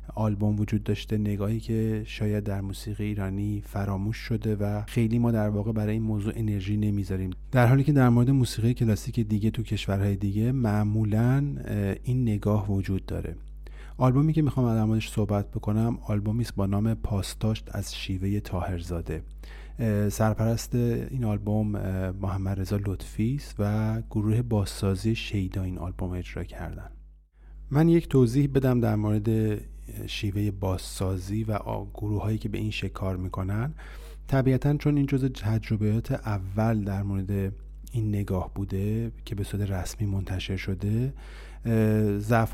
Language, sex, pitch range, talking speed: Persian, male, 100-115 Hz, 140 wpm